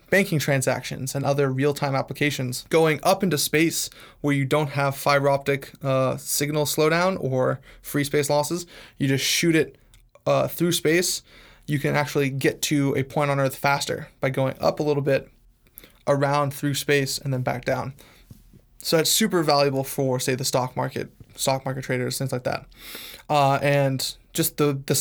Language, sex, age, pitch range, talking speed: English, male, 20-39, 135-150 Hz, 175 wpm